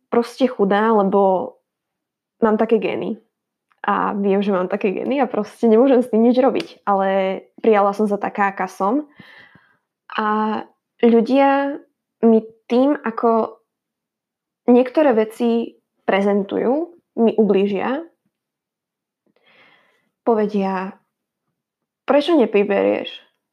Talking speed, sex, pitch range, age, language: 100 wpm, female, 205-255 Hz, 10-29, Slovak